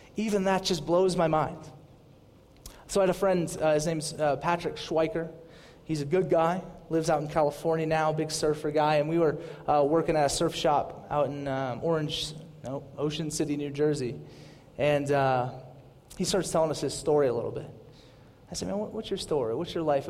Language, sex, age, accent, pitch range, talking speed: English, male, 30-49, American, 155-185 Hz, 205 wpm